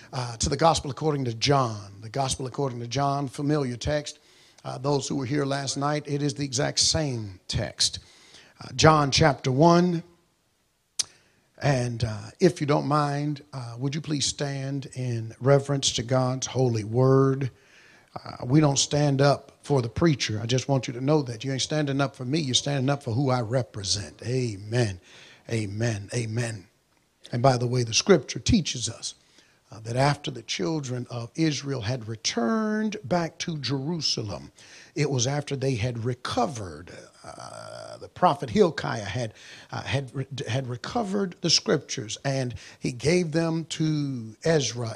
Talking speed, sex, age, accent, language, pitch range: 160 wpm, male, 50-69, American, English, 120-155 Hz